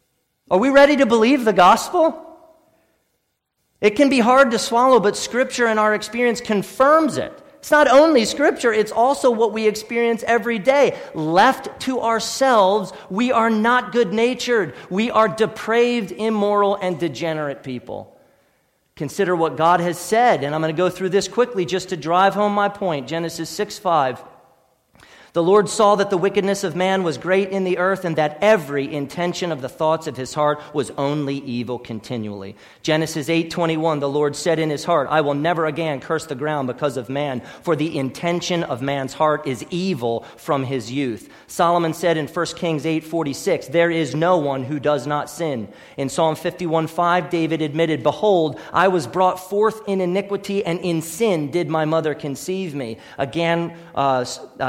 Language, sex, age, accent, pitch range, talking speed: English, male, 40-59, American, 155-210 Hz, 175 wpm